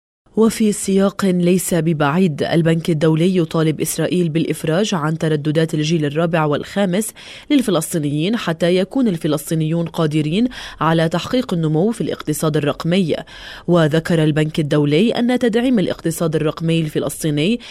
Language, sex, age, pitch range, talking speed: Arabic, female, 20-39, 155-195 Hz, 110 wpm